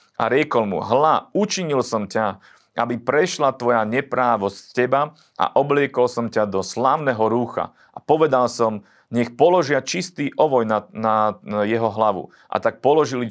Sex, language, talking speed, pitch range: male, Slovak, 160 wpm, 110-135 Hz